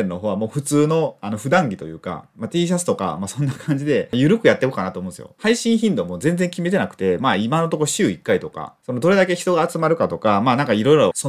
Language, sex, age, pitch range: Japanese, male, 30-49, 130-210 Hz